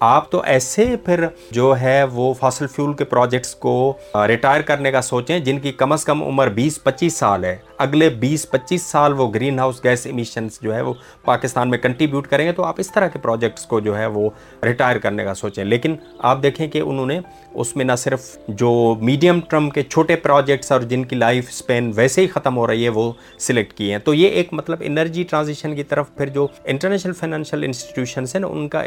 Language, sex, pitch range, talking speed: Urdu, male, 115-155 Hz, 215 wpm